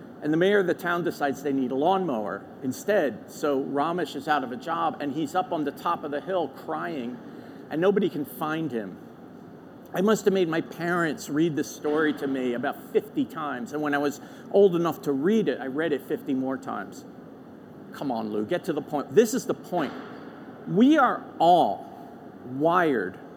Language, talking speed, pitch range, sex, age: English, 200 wpm, 155-225 Hz, male, 50-69